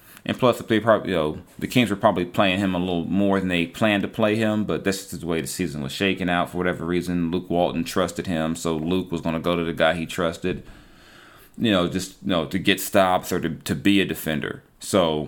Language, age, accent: English, 30-49, American